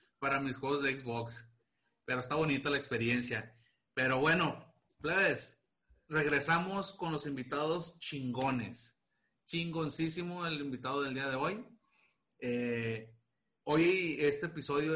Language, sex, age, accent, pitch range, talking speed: Spanish, male, 30-49, Mexican, 125-150 Hz, 115 wpm